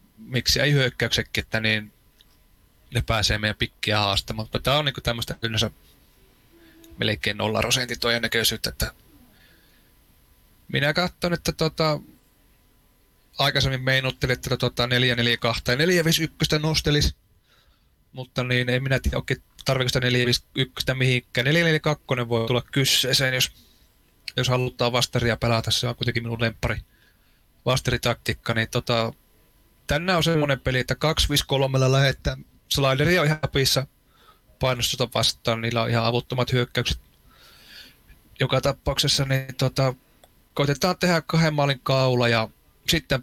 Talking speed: 120 wpm